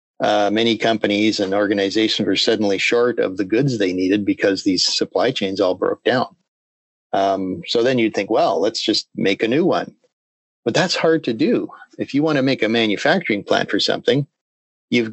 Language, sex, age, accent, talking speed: English, male, 40-59, American, 190 wpm